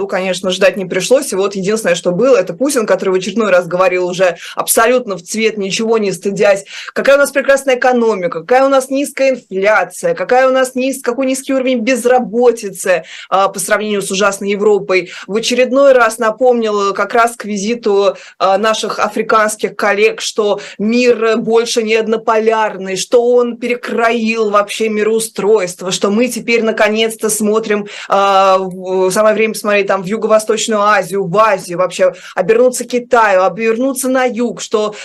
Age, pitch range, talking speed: 20-39, 195-240 Hz, 145 wpm